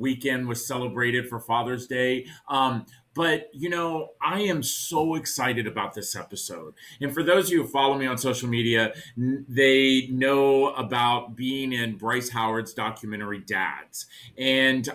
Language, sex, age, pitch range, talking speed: English, male, 40-59, 115-140 Hz, 155 wpm